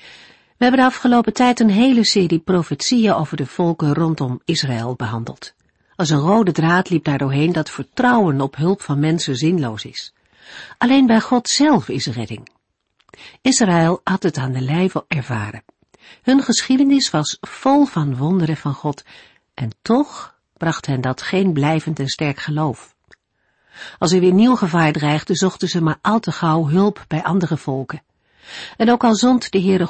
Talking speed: 165 wpm